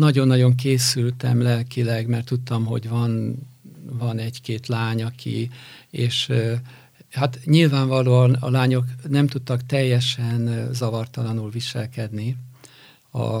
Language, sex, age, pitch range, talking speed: Hungarian, male, 50-69, 115-130 Hz, 100 wpm